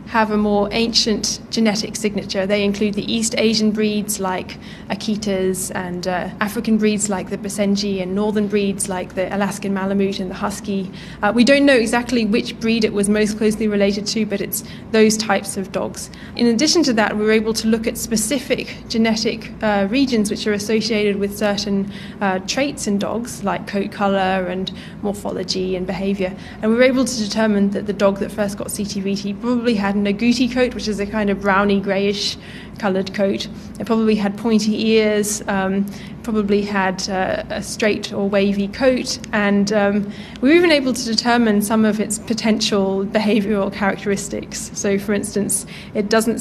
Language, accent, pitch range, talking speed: English, British, 200-220 Hz, 180 wpm